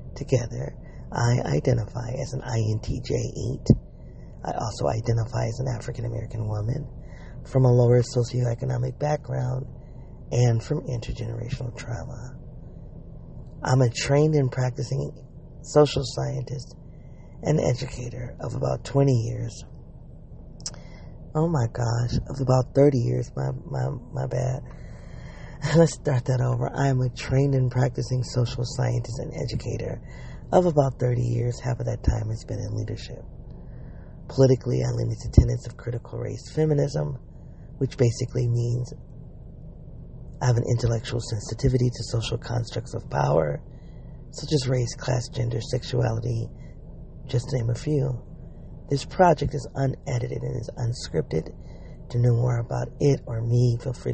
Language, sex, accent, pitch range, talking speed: English, male, American, 120-135 Hz, 135 wpm